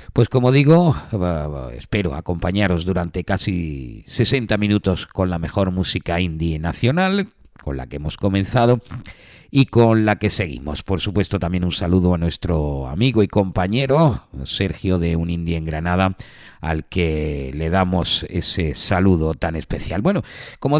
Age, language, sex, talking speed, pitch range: 50-69, Spanish, male, 145 wpm, 85-110 Hz